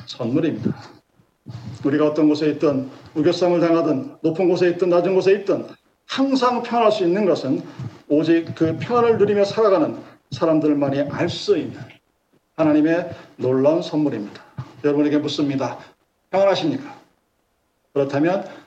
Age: 40-59